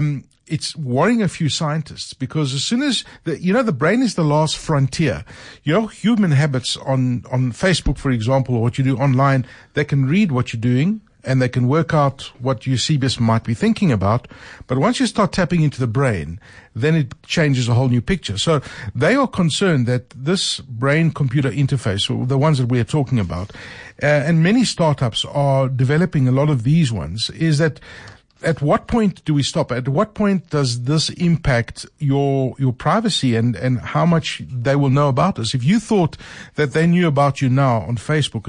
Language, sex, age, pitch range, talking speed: English, male, 60-79, 125-160 Hz, 200 wpm